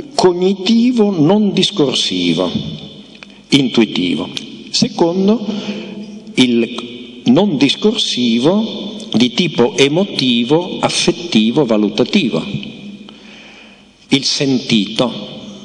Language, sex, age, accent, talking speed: Italian, male, 50-69, native, 60 wpm